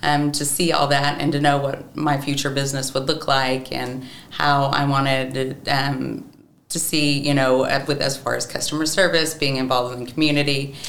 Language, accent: English, American